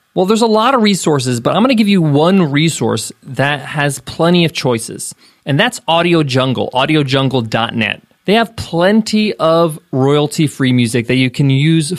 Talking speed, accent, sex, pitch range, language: 170 wpm, American, male, 140-200 Hz, English